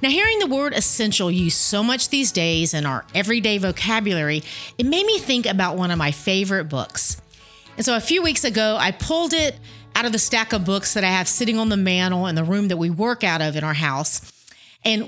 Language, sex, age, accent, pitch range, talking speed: English, female, 40-59, American, 170-235 Hz, 230 wpm